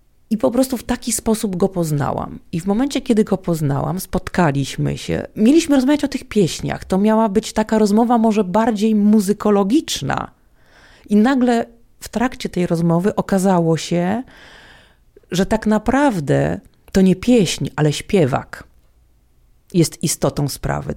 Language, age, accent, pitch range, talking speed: Polish, 40-59, native, 170-220 Hz, 135 wpm